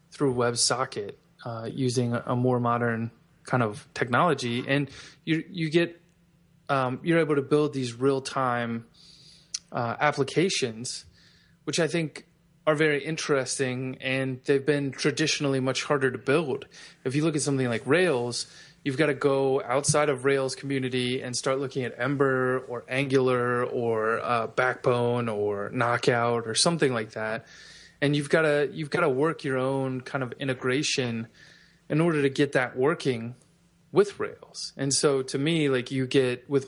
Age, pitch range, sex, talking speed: 20-39, 125-155 Hz, male, 160 wpm